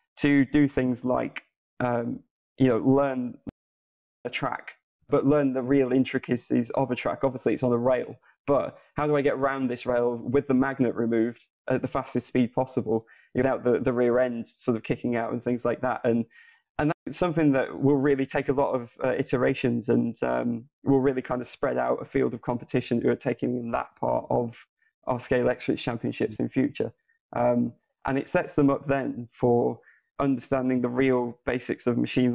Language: English